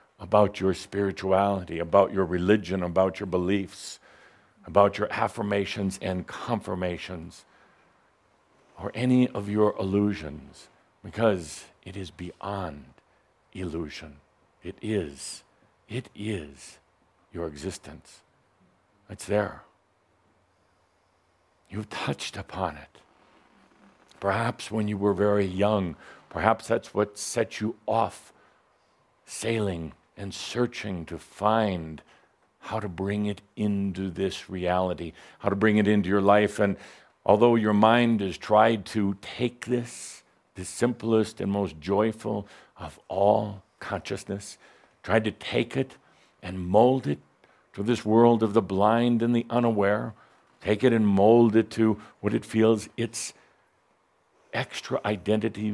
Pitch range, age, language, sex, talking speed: 95-110 Hz, 60-79, English, male, 120 wpm